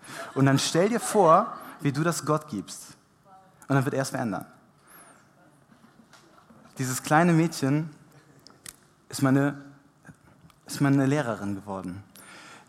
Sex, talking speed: male, 115 wpm